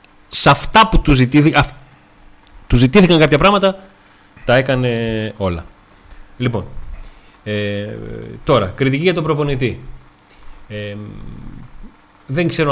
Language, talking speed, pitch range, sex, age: Greek, 110 wpm, 100-125 Hz, male, 30-49